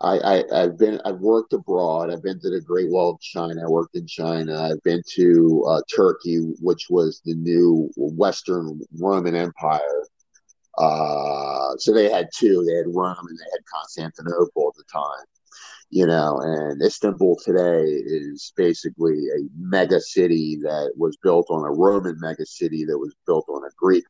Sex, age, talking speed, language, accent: male, 50-69, 170 wpm, English, American